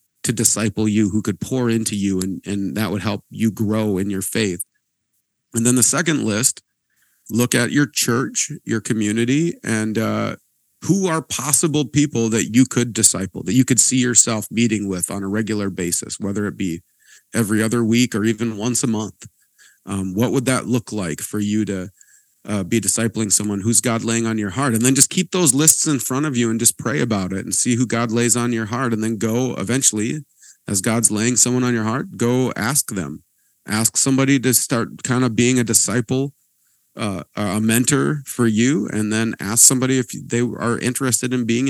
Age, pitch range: 40-59, 105-125 Hz